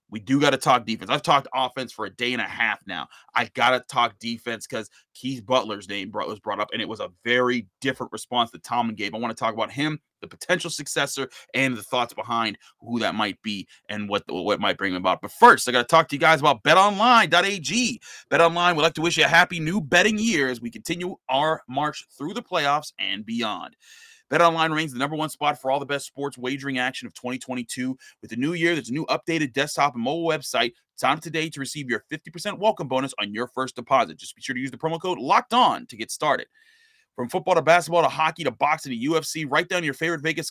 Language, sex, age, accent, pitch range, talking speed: English, male, 30-49, American, 125-175 Hz, 240 wpm